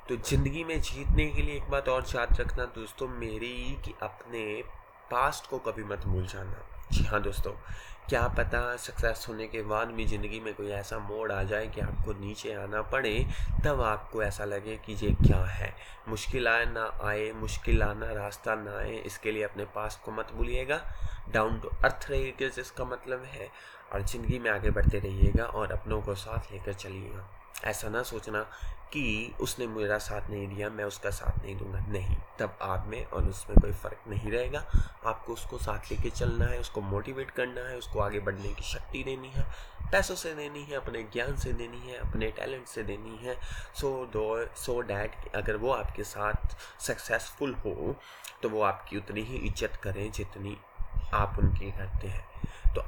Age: 20-39